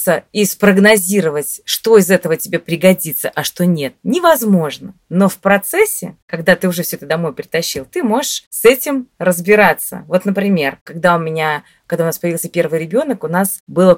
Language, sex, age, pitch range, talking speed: Russian, female, 20-39, 160-210 Hz, 170 wpm